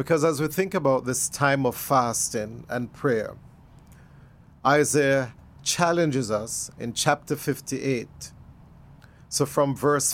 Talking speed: 120 wpm